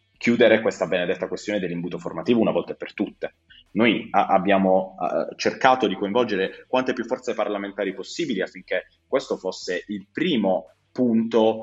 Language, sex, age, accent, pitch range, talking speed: Italian, male, 30-49, native, 100-125 Hz, 145 wpm